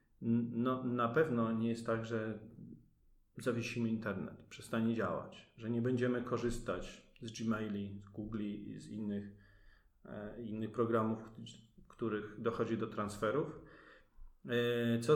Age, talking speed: 40-59, 110 wpm